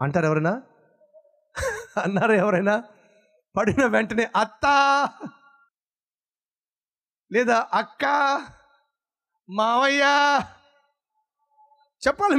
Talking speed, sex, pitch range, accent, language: 55 wpm, male, 140-220 Hz, native, Telugu